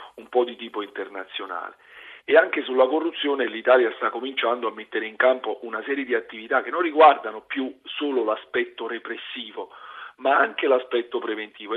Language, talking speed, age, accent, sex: Italian, 160 wpm, 40-59, native, male